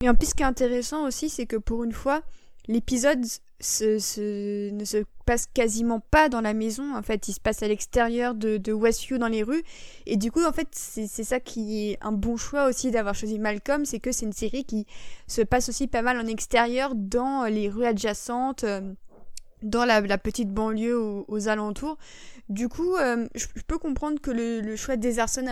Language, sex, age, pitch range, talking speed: French, female, 20-39, 215-255 Hz, 205 wpm